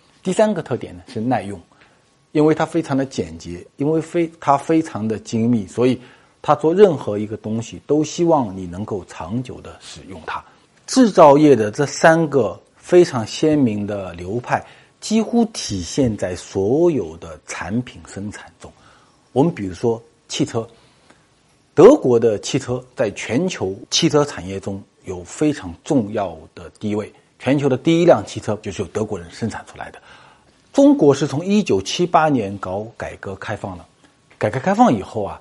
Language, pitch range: Chinese, 100-150 Hz